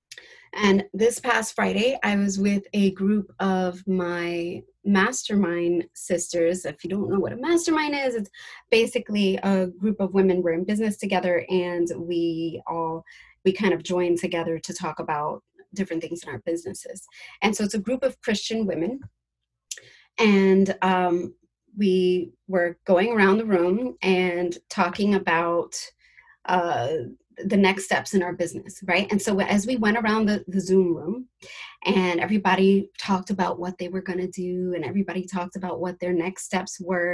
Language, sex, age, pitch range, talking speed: English, female, 30-49, 175-205 Hz, 165 wpm